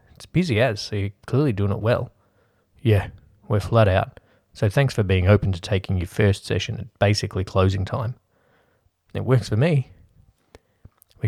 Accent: Australian